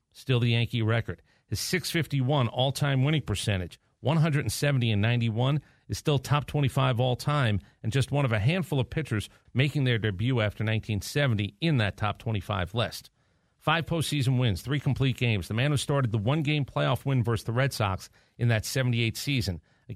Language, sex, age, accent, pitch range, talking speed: English, male, 50-69, American, 110-140 Hz, 175 wpm